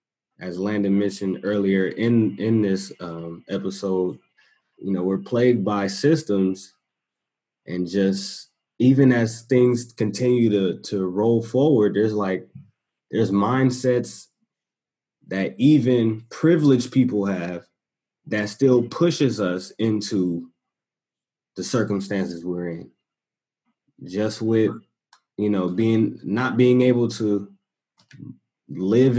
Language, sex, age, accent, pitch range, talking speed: English, male, 20-39, American, 95-120 Hz, 110 wpm